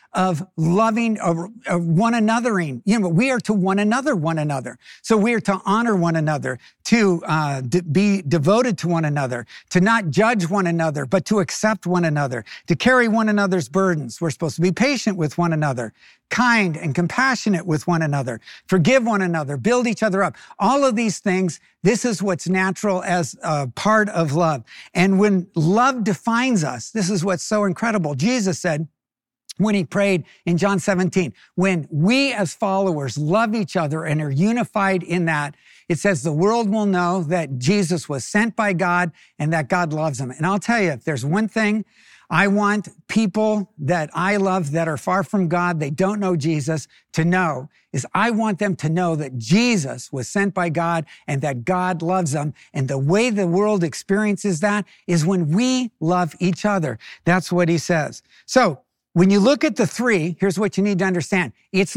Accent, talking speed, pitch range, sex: American, 190 wpm, 165-210 Hz, male